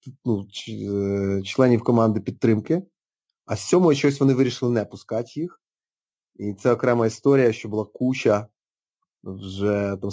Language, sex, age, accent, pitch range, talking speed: Ukrainian, male, 30-49, native, 110-140 Hz, 135 wpm